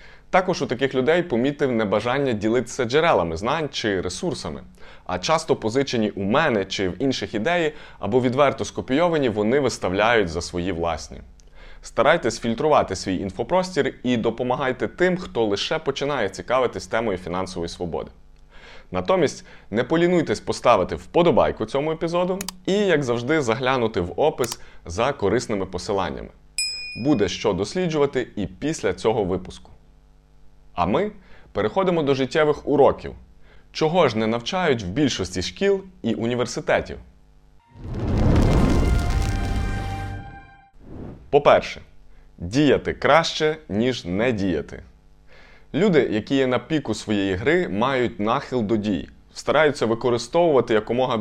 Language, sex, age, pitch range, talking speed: Ukrainian, male, 20-39, 100-145 Hz, 115 wpm